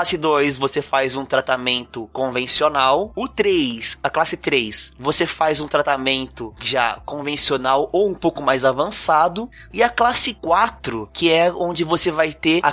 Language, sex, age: Portuguese, male, 20-39